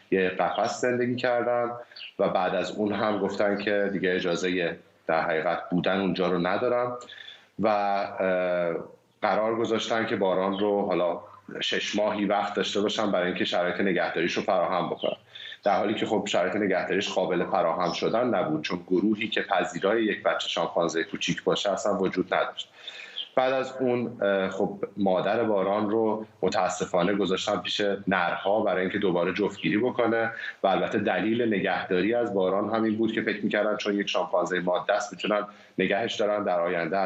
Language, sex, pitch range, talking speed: Persian, male, 95-115 Hz, 155 wpm